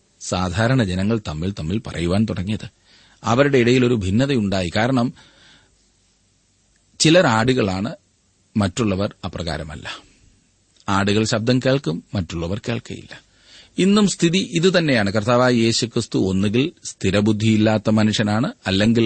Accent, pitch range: native, 100-130 Hz